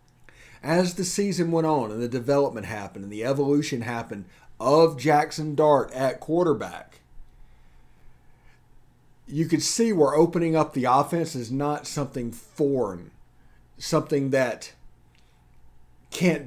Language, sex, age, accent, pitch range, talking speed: English, male, 40-59, American, 120-170 Hz, 120 wpm